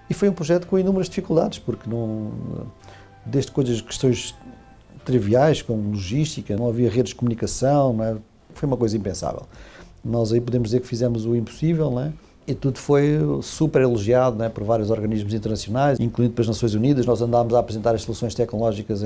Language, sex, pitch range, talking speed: Portuguese, male, 110-130 Hz, 180 wpm